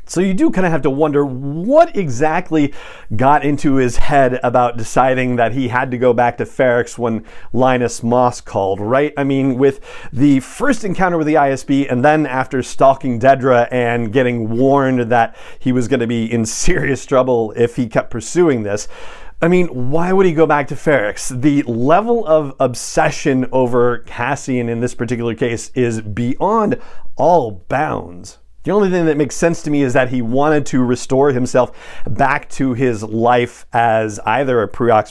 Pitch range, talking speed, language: 120-150 Hz, 180 wpm, English